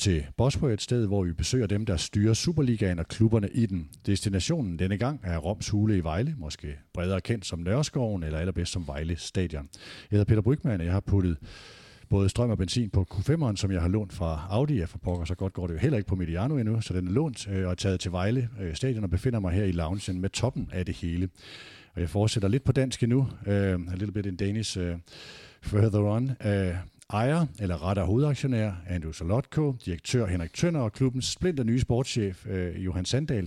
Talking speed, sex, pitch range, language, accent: 210 wpm, male, 90-120 Hz, Danish, native